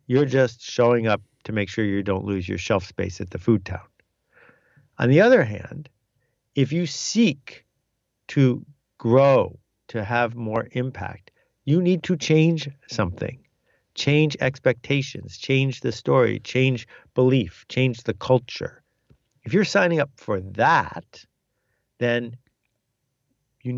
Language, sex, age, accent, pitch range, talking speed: English, male, 50-69, American, 110-135 Hz, 135 wpm